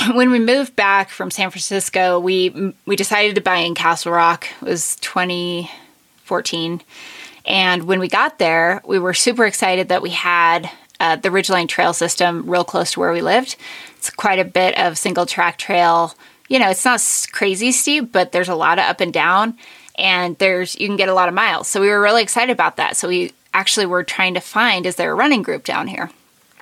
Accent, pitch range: American, 180-215 Hz